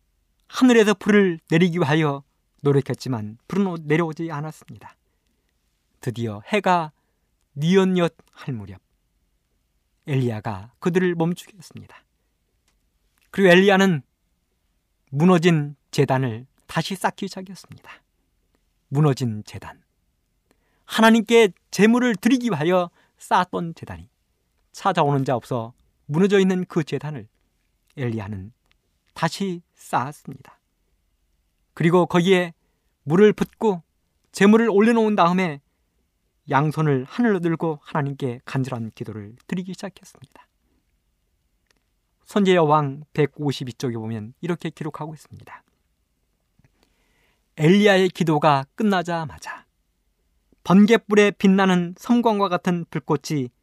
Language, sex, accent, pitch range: Korean, male, native, 120-190 Hz